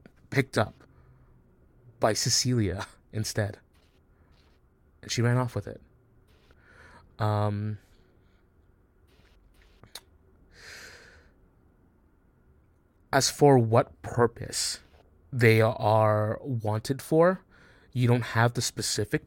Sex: male